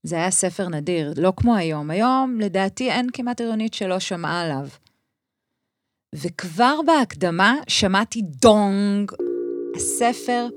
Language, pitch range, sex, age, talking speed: Hebrew, 170-235 Hz, female, 30-49, 115 wpm